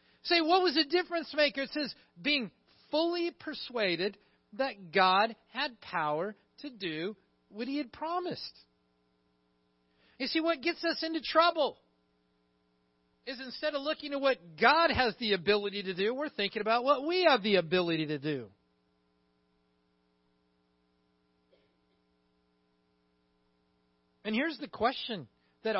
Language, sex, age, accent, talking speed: English, male, 50-69, American, 130 wpm